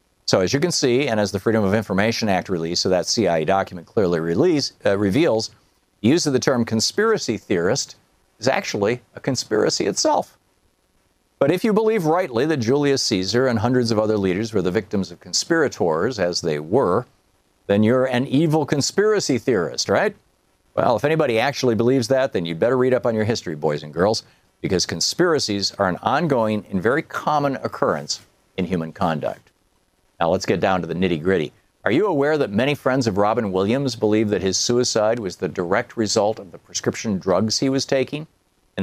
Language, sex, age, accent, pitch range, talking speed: English, male, 50-69, American, 100-140 Hz, 190 wpm